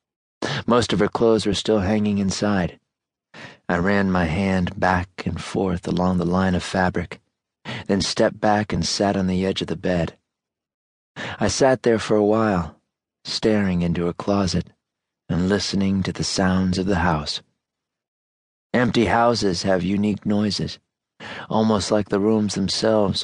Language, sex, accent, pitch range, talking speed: English, male, American, 85-105 Hz, 150 wpm